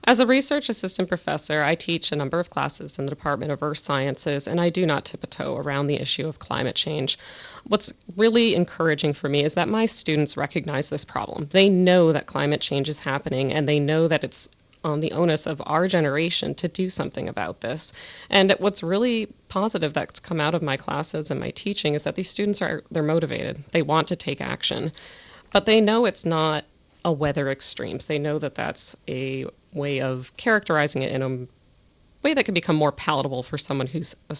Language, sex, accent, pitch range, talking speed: English, female, American, 145-180 Hz, 210 wpm